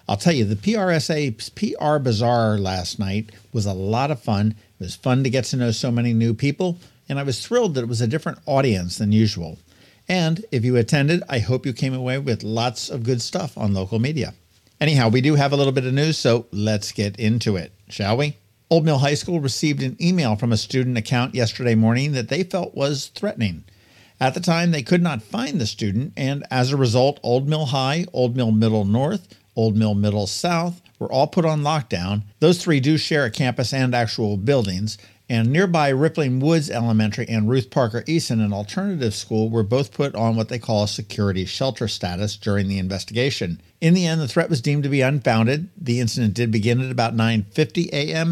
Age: 50-69